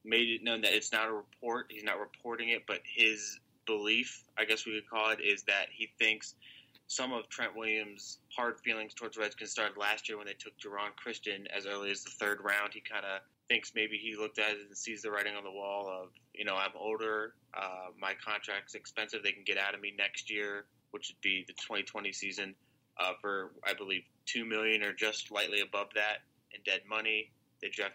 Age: 20-39